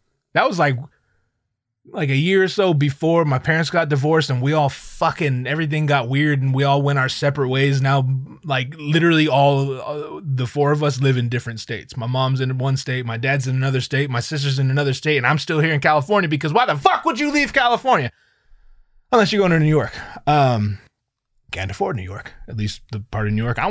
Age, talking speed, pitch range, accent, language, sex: 20-39, 225 wpm, 125-165 Hz, American, English, male